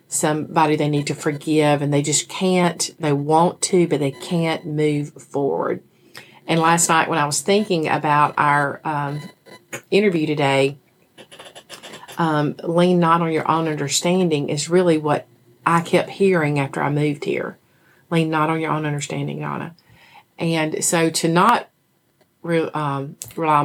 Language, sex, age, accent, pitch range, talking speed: English, female, 40-59, American, 150-170 Hz, 155 wpm